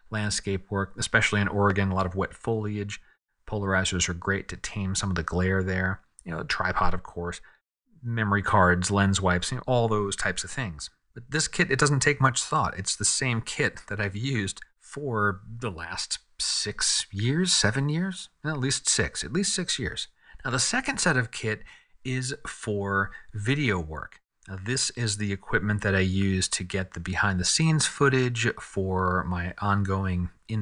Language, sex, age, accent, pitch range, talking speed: English, male, 30-49, American, 95-135 Hz, 190 wpm